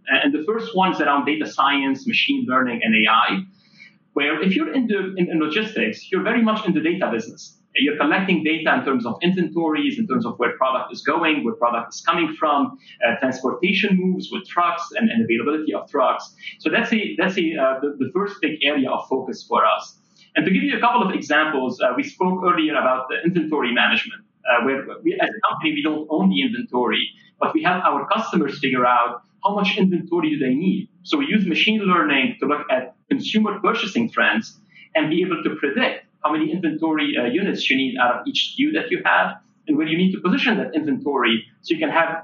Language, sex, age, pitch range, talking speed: English, male, 30-49, 155-235 Hz, 215 wpm